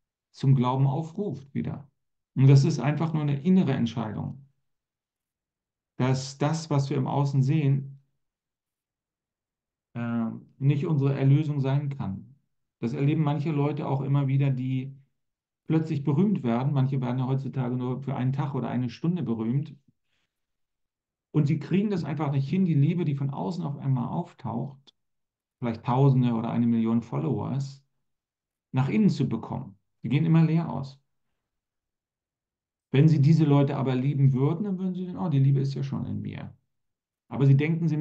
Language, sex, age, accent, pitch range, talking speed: German, male, 40-59, German, 130-150 Hz, 160 wpm